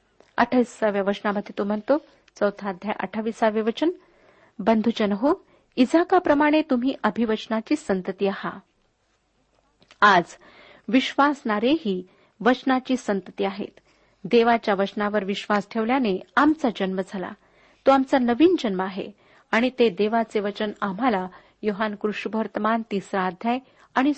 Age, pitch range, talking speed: 50-69, 200-255 Hz, 105 wpm